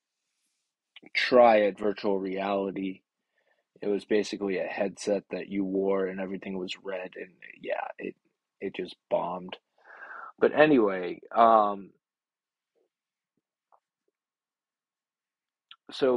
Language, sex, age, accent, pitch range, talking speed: English, male, 20-39, American, 100-115 Hz, 95 wpm